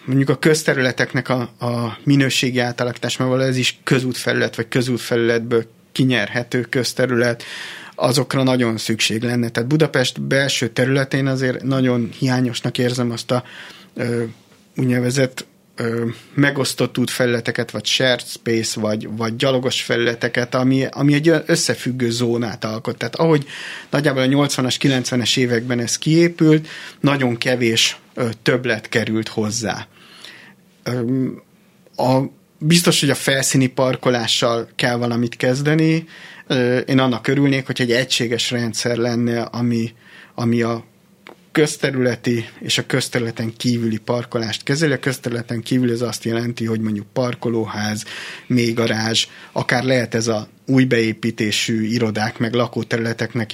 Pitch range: 115-130 Hz